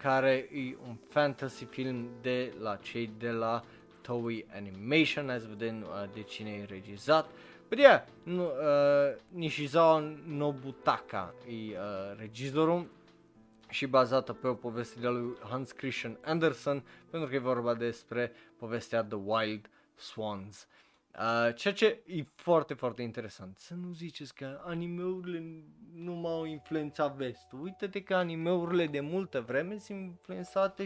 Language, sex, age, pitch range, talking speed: Romanian, male, 20-39, 115-160 Hz, 140 wpm